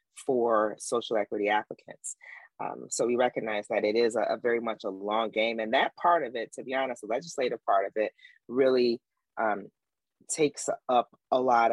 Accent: American